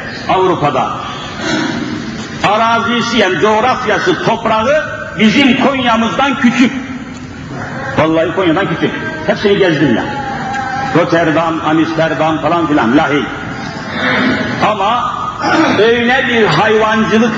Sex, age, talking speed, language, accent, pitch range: male, 50-69, 80 wpm, Turkish, native, 205-295 Hz